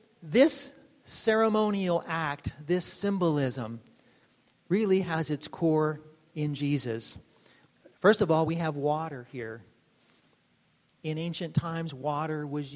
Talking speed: 110 wpm